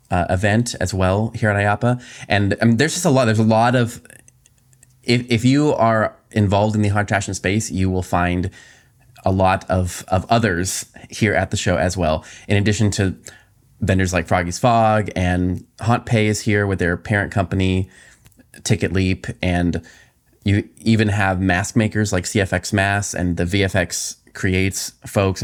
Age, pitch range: 20-39, 95-115 Hz